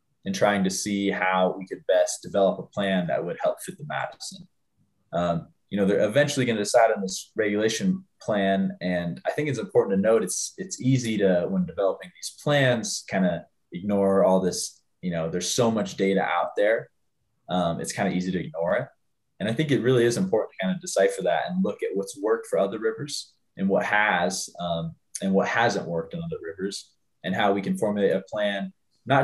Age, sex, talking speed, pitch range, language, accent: 20-39, male, 210 wpm, 95-130 Hz, English, American